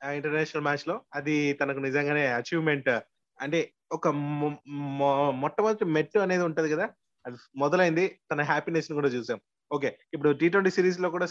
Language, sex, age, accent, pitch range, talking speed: Telugu, male, 20-39, native, 145-190 Hz, 155 wpm